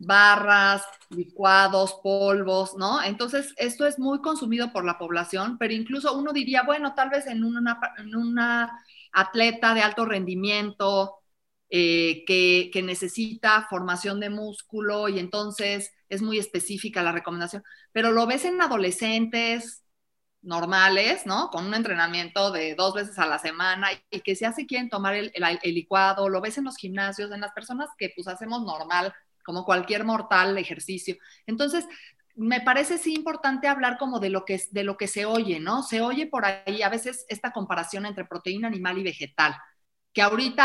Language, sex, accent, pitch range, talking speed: Spanish, female, Mexican, 185-235 Hz, 170 wpm